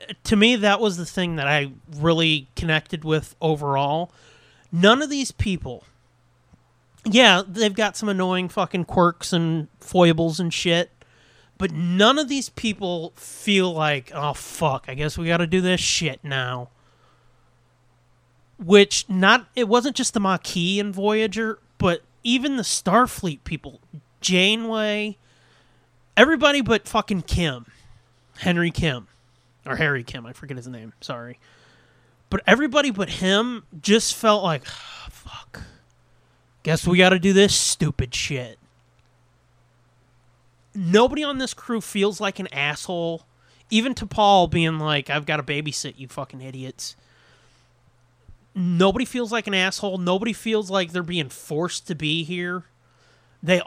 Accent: American